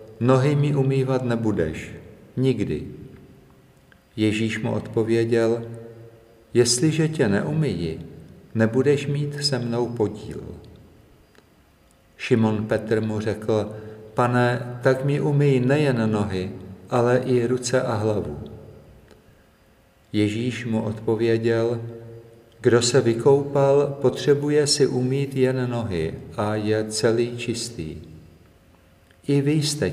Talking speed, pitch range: 100 wpm, 105-130 Hz